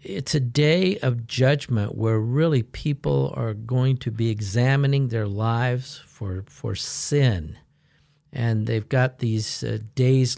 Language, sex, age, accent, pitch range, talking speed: English, male, 50-69, American, 110-135 Hz, 135 wpm